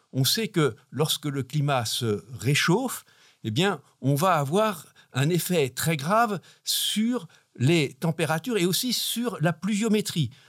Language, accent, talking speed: French, French, 145 wpm